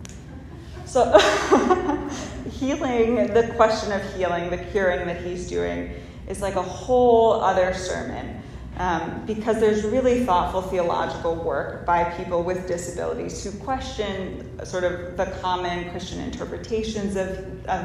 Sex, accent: female, American